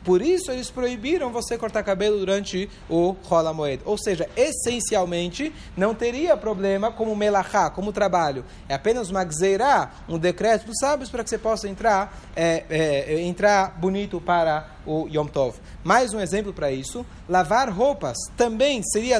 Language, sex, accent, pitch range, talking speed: Portuguese, male, Brazilian, 175-240 Hz, 155 wpm